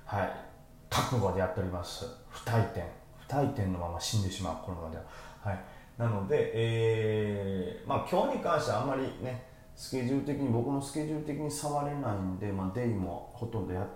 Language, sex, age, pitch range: Japanese, male, 30-49, 100-130 Hz